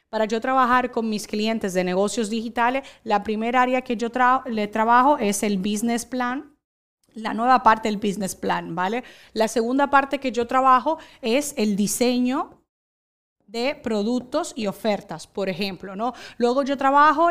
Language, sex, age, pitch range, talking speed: Spanish, female, 30-49, 210-275 Hz, 165 wpm